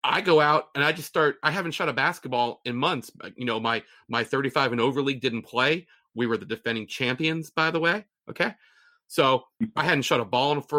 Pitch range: 130-170 Hz